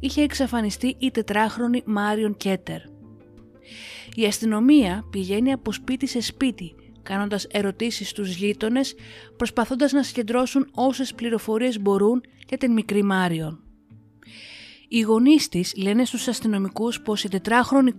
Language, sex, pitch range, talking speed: Greek, female, 185-240 Hz, 120 wpm